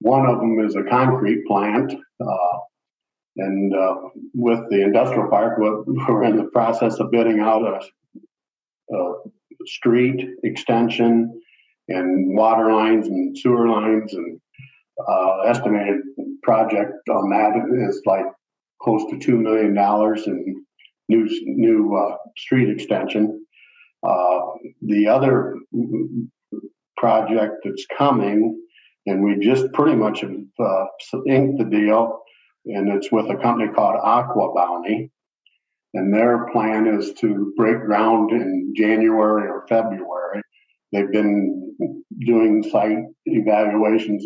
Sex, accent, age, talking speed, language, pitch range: male, American, 50-69, 120 wpm, English, 105-120 Hz